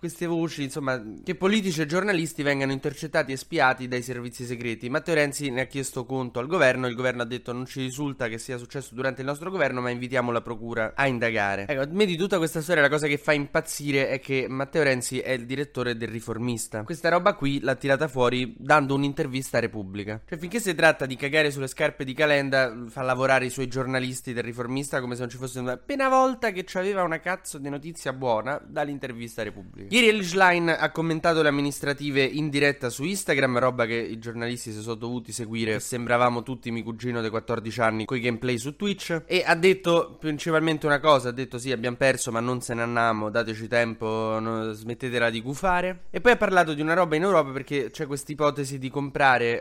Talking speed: 210 wpm